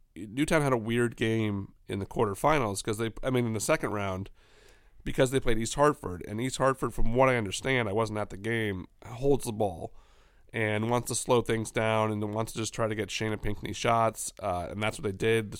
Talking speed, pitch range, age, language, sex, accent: 220 wpm, 105-130 Hz, 30-49, English, male, American